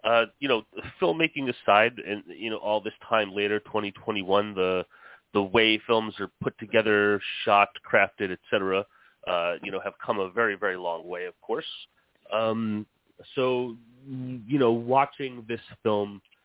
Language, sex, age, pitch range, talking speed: English, male, 30-49, 100-120 Hz, 155 wpm